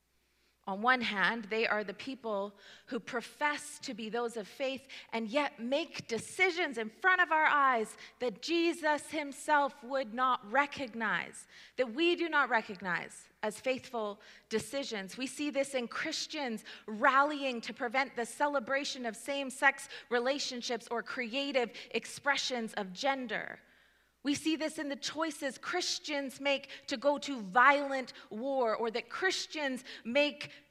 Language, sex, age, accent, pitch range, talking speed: English, female, 30-49, American, 215-280 Hz, 140 wpm